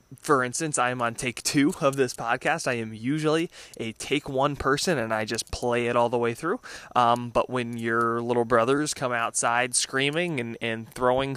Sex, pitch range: male, 115-145 Hz